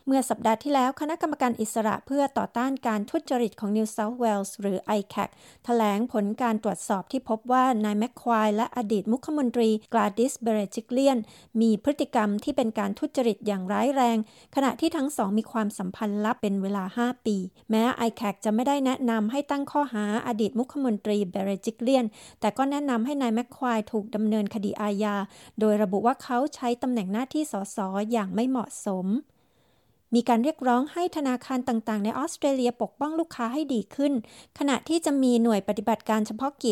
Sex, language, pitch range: female, Thai, 210-255 Hz